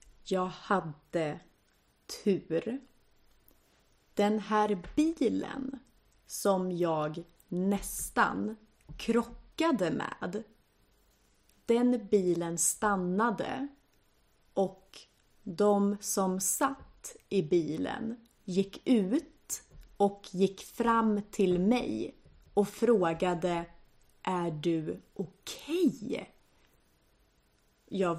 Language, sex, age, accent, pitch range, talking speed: Swedish, female, 30-49, native, 180-245 Hz, 70 wpm